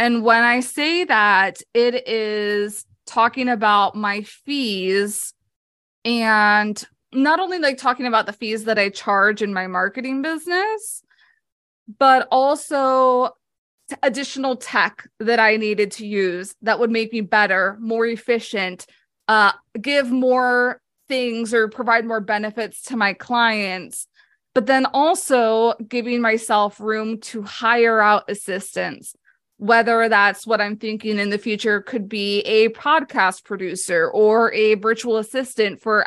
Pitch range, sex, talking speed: 210-260 Hz, female, 135 wpm